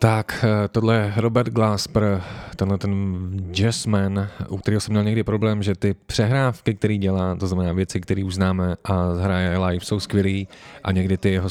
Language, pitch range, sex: Czech, 90-105 Hz, male